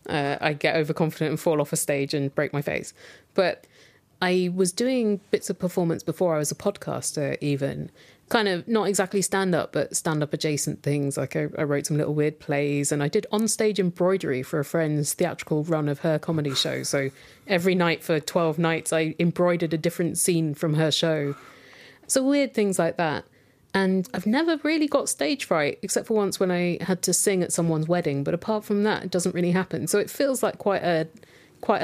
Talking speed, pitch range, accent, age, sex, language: 210 wpm, 155-195 Hz, British, 30-49, female, English